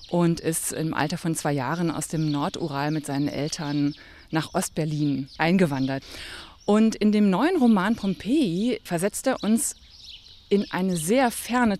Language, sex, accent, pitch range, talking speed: German, female, German, 160-215 Hz, 145 wpm